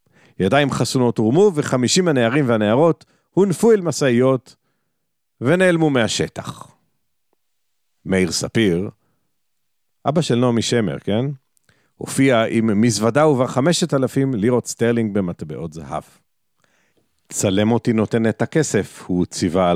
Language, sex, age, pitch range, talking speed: Hebrew, male, 50-69, 105-145 Hz, 105 wpm